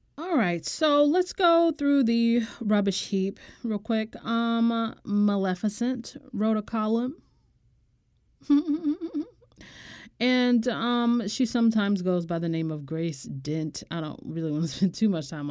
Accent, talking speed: American, 140 wpm